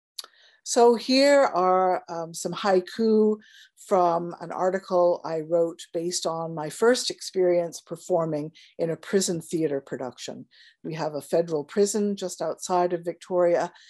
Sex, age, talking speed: female, 50-69, 135 wpm